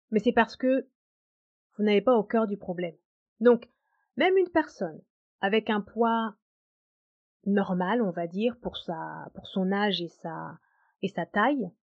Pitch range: 190-255 Hz